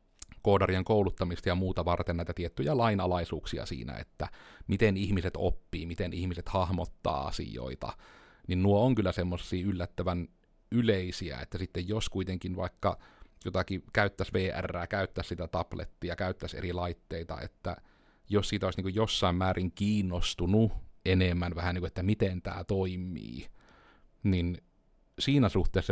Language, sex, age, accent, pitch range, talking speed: Finnish, male, 30-49, native, 90-100 Hz, 125 wpm